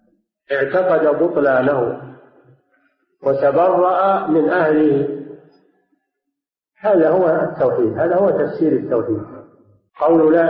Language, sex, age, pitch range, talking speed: Arabic, male, 50-69, 145-205 Hz, 80 wpm